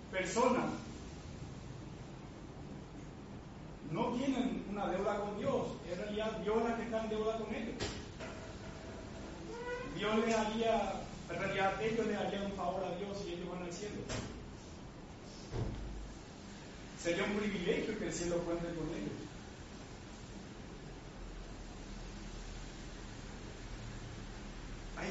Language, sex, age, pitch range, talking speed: Spanish, male, 30-49, 195-240 Hz, 110 wpm